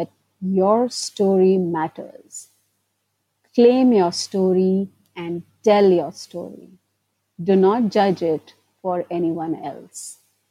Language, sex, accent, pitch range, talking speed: English, female, Indian, 175-220 Hz, 95 wpm